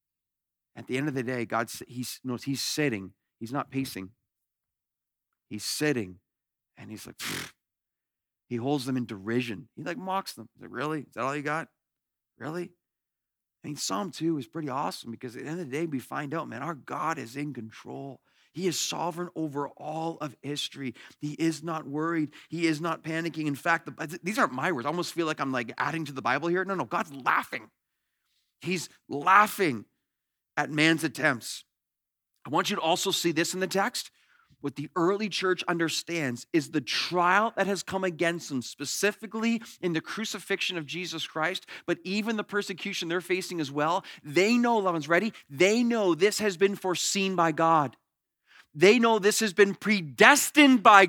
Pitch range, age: 145-205 Hz, 40-59